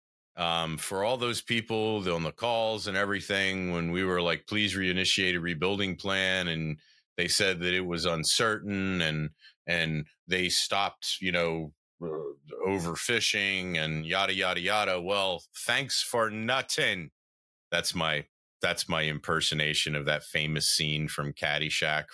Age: 40-59